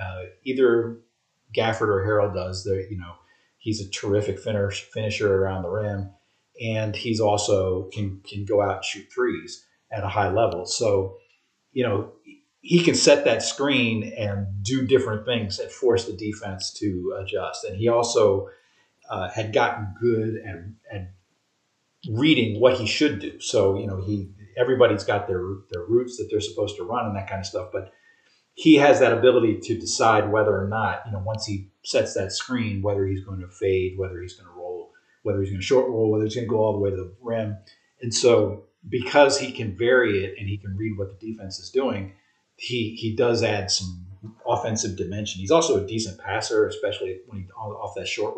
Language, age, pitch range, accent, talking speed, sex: English, 40-59, 100-125 Hz, American, 200 wpm, male